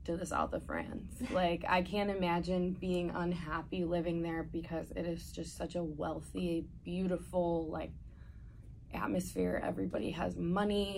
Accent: American